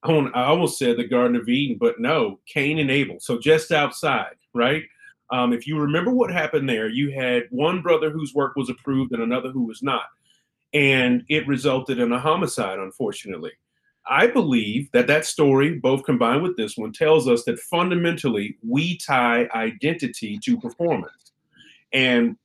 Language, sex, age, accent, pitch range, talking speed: English, male, 30-49, American, 130-200 Hz, 170 wpm